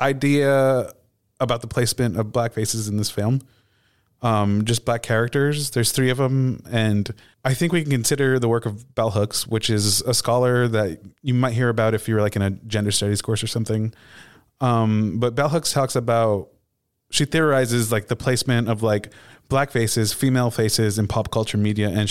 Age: 20-39